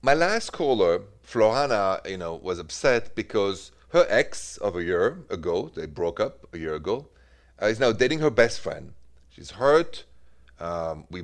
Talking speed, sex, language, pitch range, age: 170 wpm, male, English, 75-115 Hz, 30-49